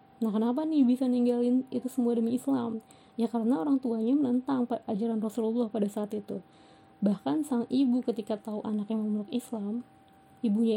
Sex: female